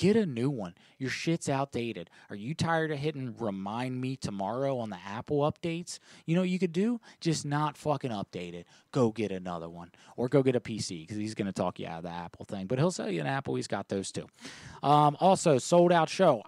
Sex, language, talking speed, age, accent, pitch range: male, English, 235 wpm, 20-39, American, 105-150 Hz